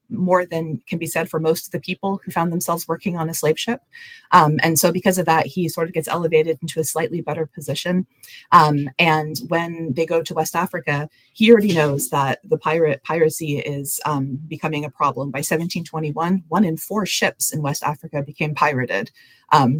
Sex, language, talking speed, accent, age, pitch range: female, English, 200 wpm, American, 30-49, 145-170 Hz